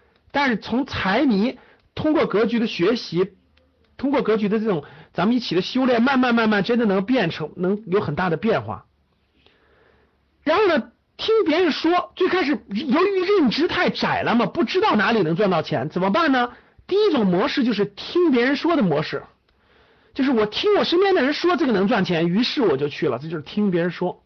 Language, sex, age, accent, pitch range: Chinese, male, 50-69, native, 180-275 Hz